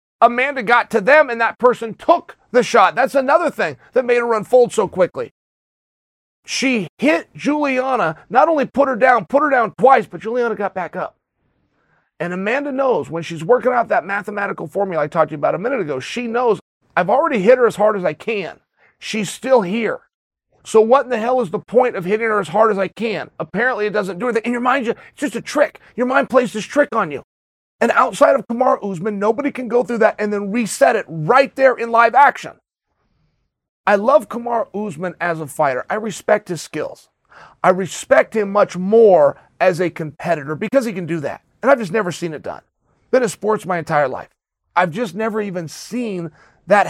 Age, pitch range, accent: 40-59, 185-255 Hz, American